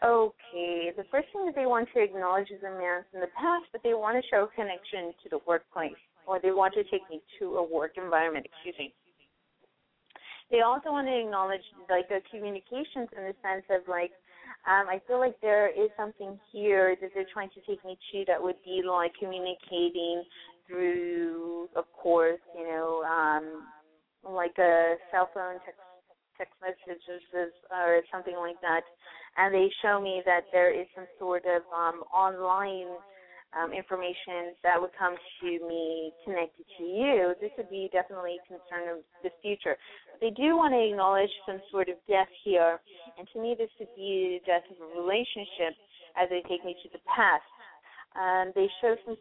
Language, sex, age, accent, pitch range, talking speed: English, female, 30-49, American, 175-200 Hz, 185 wpm